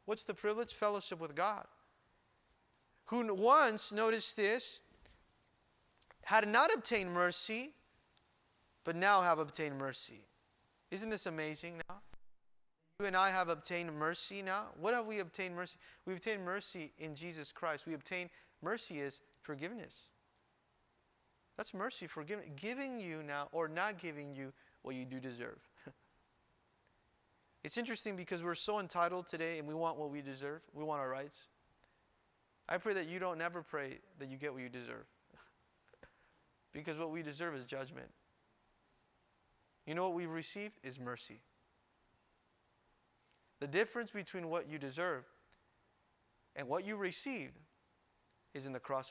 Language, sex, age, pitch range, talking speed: English, male, 30-49, 150-200 Hz, 145 wpm